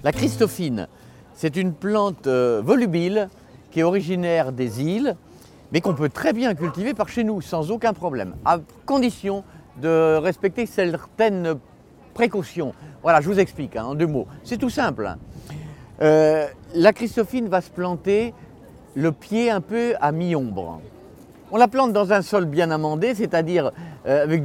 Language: French